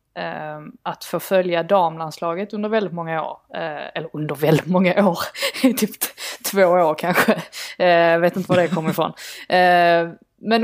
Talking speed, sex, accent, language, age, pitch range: 135 wpm, female, native, Swedish, 20-39, 170-200 Hz